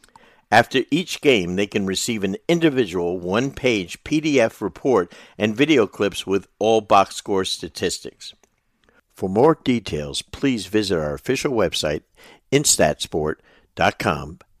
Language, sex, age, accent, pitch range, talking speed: English, male, 60-79, American, 90-115 Hz, 115 wpm